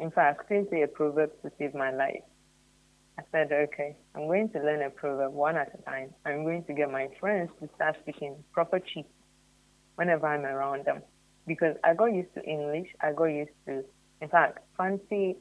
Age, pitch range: 30-49, 140-165 Hz